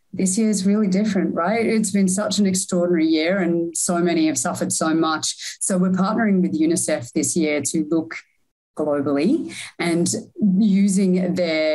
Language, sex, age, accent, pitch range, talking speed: English, female, 30-49, Australian, 150-185 Hz, 165 wpm